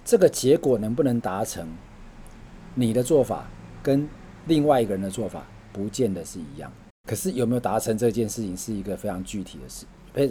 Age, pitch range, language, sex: 40-59, 95-125 Hz, Chinese, male